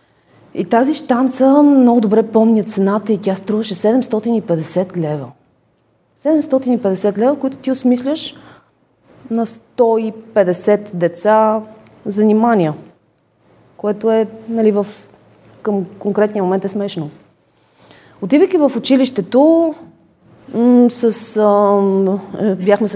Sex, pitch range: female, 180-235 Hz